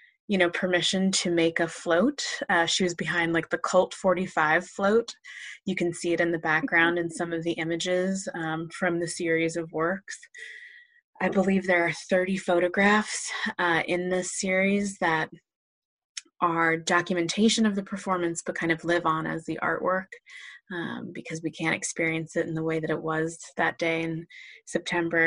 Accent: American